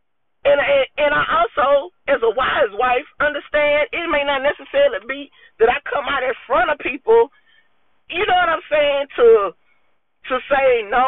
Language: English